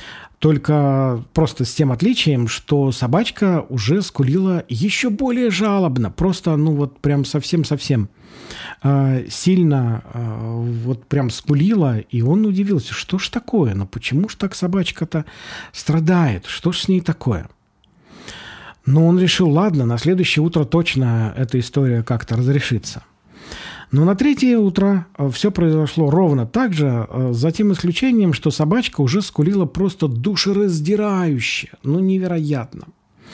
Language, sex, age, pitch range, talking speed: Russian, male, 40-59, 135-200 Hz, 130 wpm